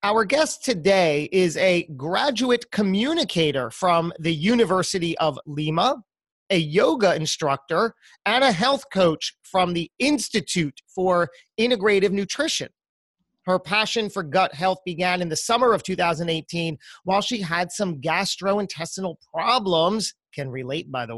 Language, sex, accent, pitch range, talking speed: English, male, American, 170-215 Hz, 130 wpm